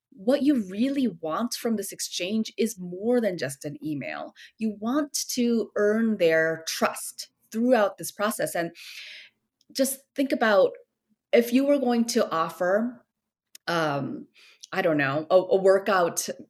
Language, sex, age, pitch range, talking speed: English, female, 30-49, 185-265 Hz, 140 wpm